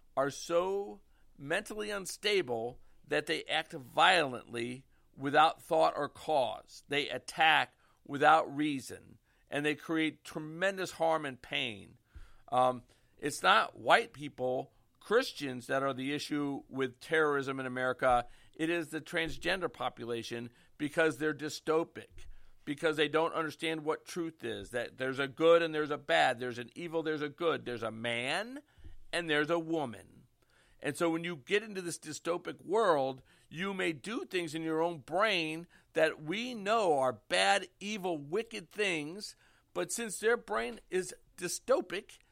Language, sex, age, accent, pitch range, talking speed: English, male, 50-69, American, 130-190 Hz, 145 wpm